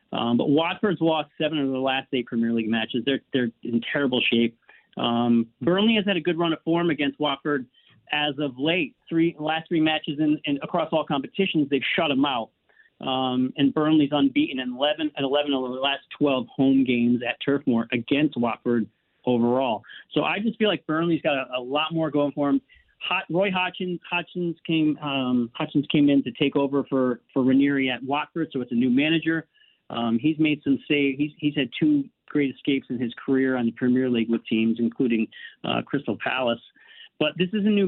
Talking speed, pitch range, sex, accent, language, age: 210 wpm, 130-160 Hz, male, American, English, 40-59